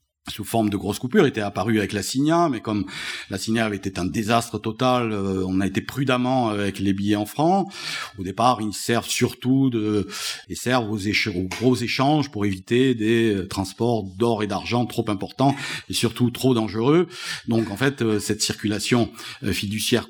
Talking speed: 180 wpm